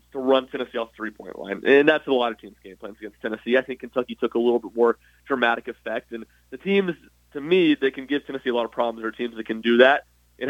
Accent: American